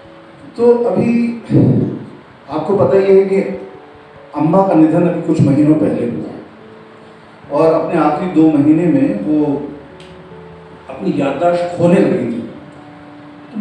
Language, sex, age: Hindi, male, 40-59